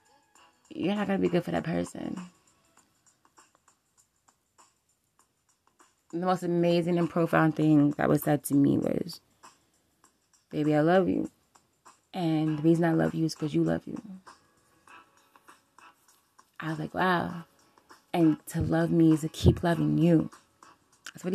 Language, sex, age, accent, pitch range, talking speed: English, female, 20-39, American, 160-215 Hz, 145 wpm